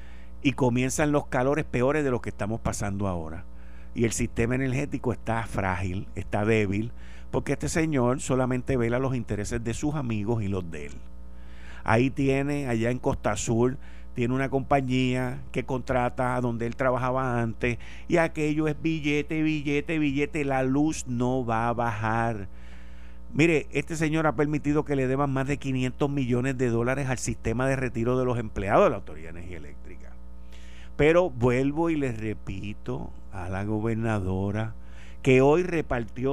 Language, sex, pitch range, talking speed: Spanish, male, 100-130 Hz, 165 wpm